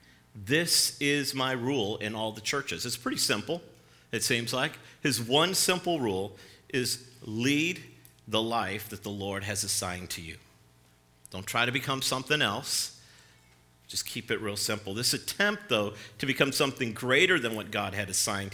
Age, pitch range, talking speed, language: 50-69, 90-135 Hz, 170 wpm, English